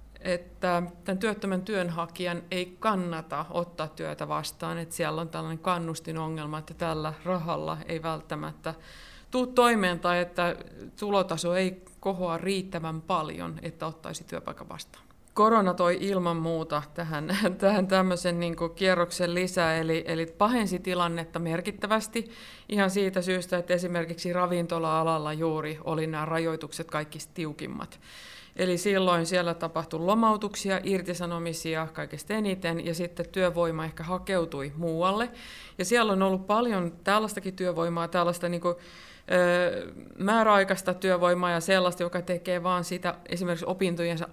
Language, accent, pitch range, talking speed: Finnish, native, 165-185 Hz, 125 wpm